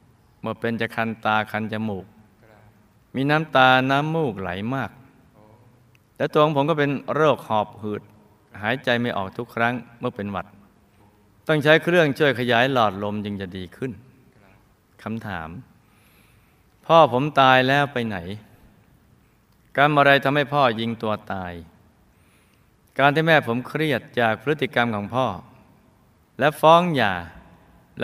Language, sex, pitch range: Thai, male, 105-130 Hz